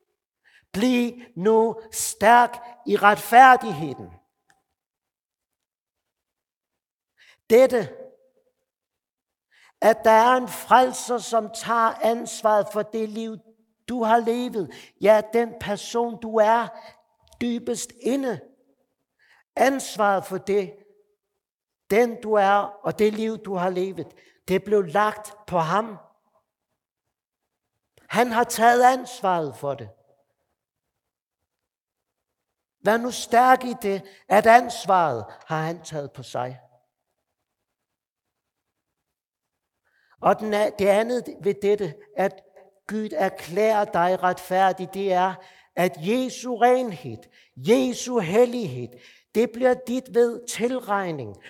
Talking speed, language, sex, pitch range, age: 100 wpm, Danish, male, 190-235 Hz, 50-69